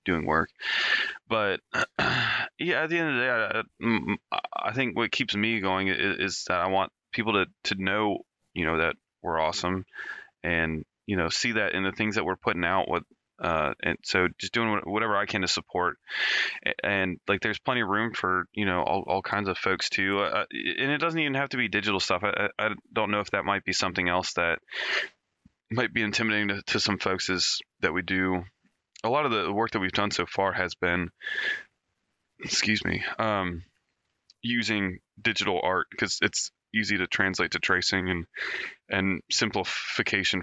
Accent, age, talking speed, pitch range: American, 20-39, 195 wpm, 90-110 Hz